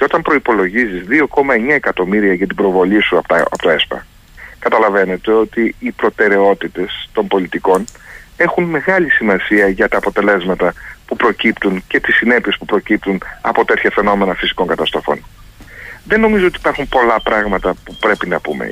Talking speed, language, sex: 145 wpm, Greek, male